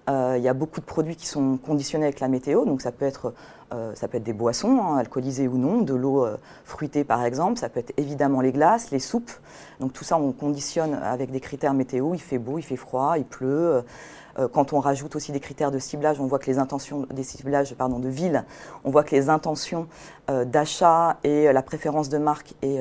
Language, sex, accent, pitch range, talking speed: French, female, French, 130-155 Hz, 235 wpm